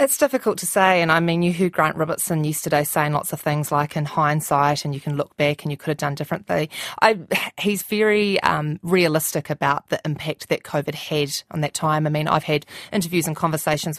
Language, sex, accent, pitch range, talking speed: English, female, Australian, 150-180 Hz, 220 wpm